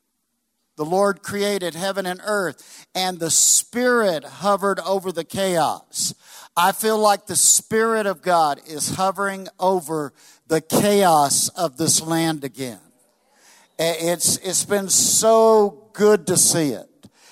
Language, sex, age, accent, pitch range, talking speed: English, male, 50-69, American, 165-210 Hz, 130 wpm